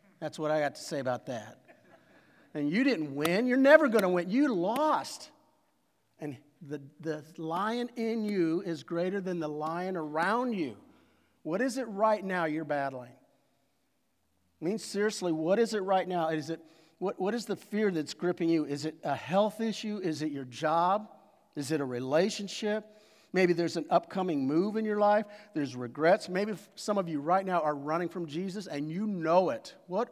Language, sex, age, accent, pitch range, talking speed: English, male, 50-69, American, 140-195 Hz, 185 wpm